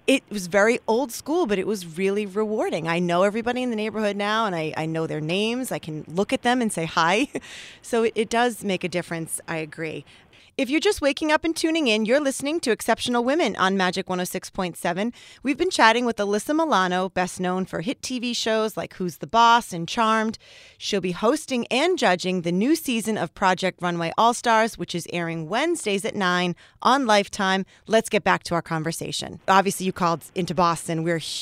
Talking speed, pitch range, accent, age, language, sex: 205 wpm, 175-230 Hz, American, 30-49, English, female